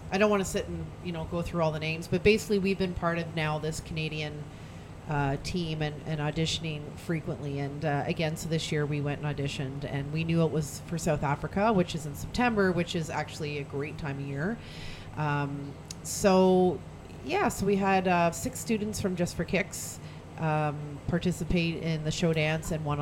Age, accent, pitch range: 40-59, American, 145-175 Hz